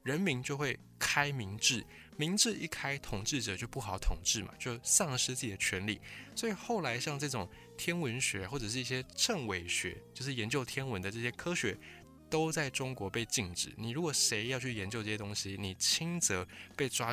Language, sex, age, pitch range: Chinese, male, 20-39, 100-135 Hz